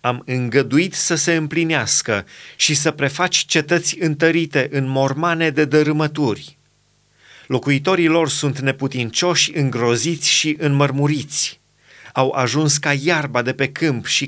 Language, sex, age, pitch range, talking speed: Romanian, male, 30-49, 130-160 Hz, 120 wpm